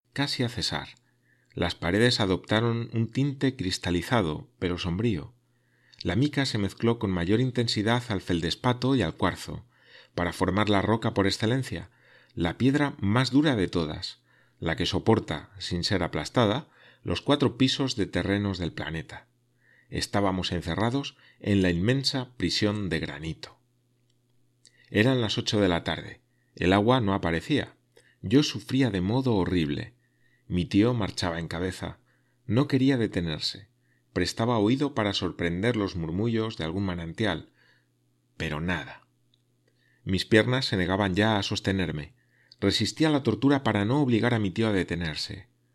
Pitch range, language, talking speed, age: 85-120 Hz, Spanish, 140 wpm, 40-59